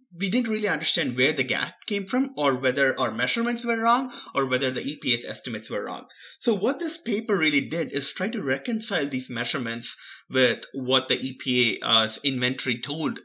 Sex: male